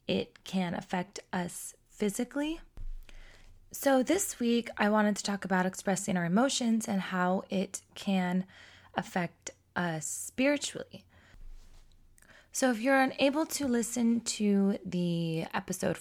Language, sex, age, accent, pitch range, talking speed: English, female, 20-39, American, 175-220 Hz, 120 wpm